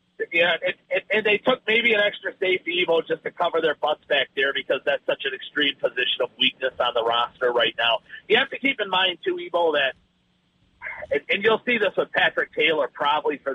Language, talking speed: English, 215 wpm